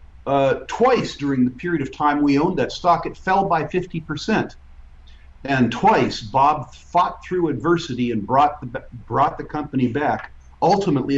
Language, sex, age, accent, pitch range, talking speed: English, male, 50-69, American, 110-155 Hz, 155 wpm